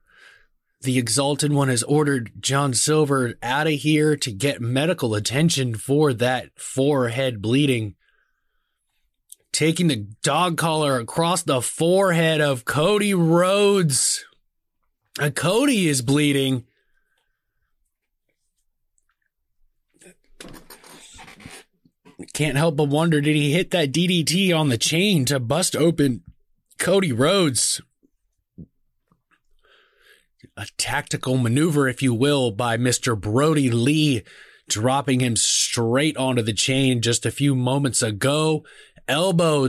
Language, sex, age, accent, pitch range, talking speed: English, male, 20-39, American, 125-165 Hz, 105 wpm